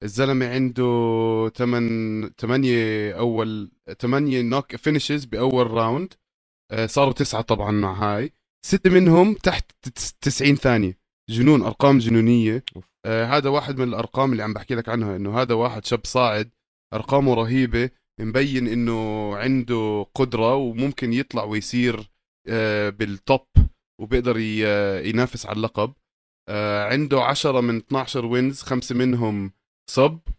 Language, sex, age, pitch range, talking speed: Arabic, male, 20-39, 110-130 Hz, 125 wpm